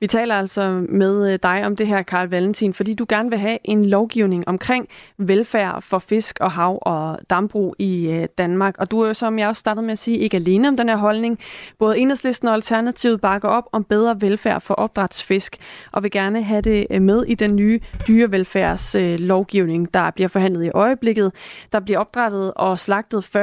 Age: 30-49